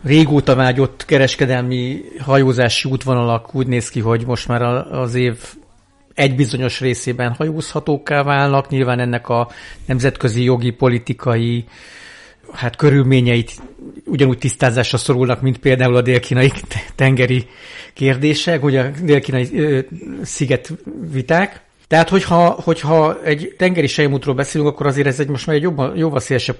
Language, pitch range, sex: Hungarian, 120-140 Hz, male